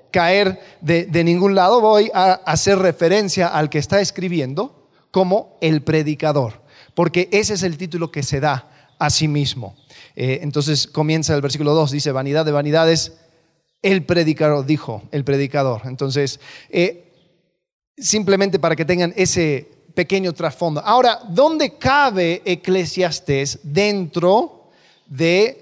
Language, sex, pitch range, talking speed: Spanish, male, 155-215 Hz, 135 wpm